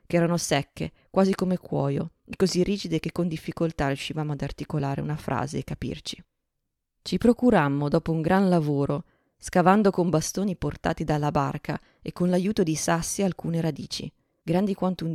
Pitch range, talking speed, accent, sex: 150-180 Hz, 160 wpm, native, female